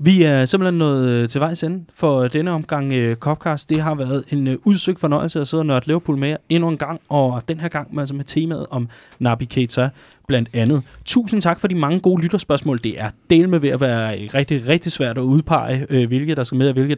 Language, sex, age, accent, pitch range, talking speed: Danish, male, 20-39, native, 125-160 Hz, 230 wpm